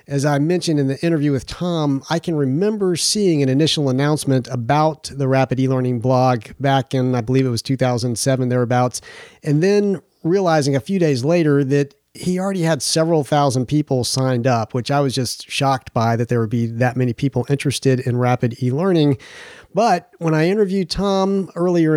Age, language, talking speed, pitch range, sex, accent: 40-59, English, 185 wpm, 130-160 Hz, male, American